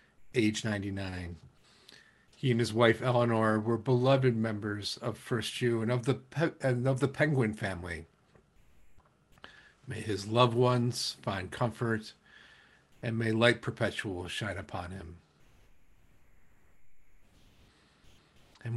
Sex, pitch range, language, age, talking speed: male, 100-125 Hz, English, 50-69, 120 wpm